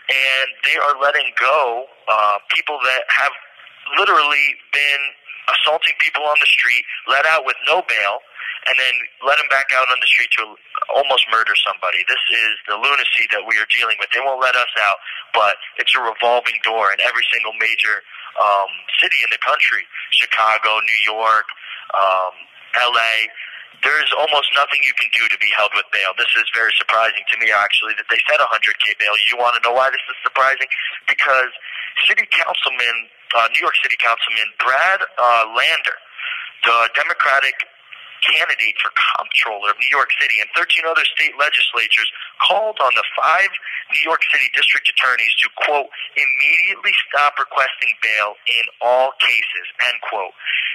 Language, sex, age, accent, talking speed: English, male, 30-49, American, 170 wpm